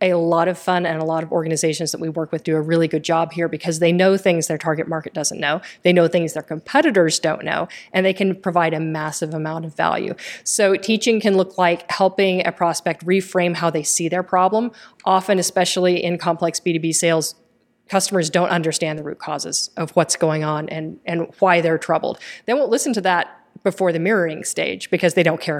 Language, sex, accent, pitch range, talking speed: English, female, American, 165-190 Hz, 215 wpm